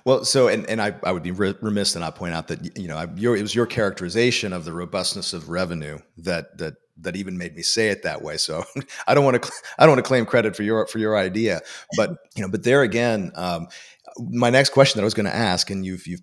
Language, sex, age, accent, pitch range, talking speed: English, male, 40-59, American, 90-115 Hz, 270 wpm